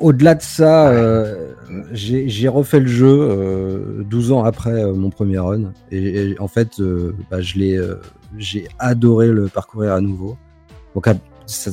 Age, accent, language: 40-59, French, French